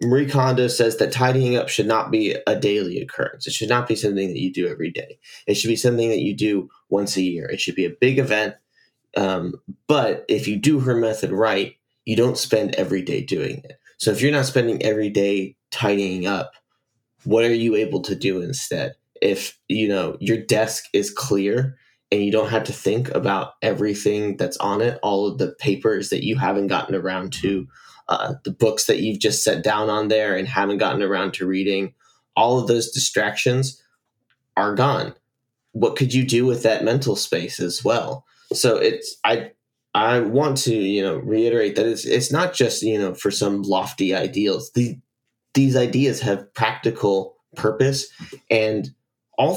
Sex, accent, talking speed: male, American, 190 wpm